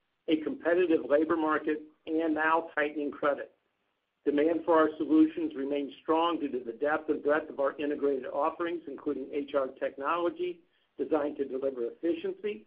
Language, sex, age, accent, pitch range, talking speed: English, male, 50-69, American, 145-170 Hz, 145 wpm